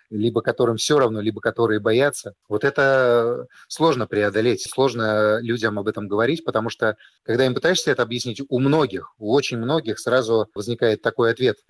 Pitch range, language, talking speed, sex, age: 110-140 Hz, Russian, 165 wpm, male, 30-49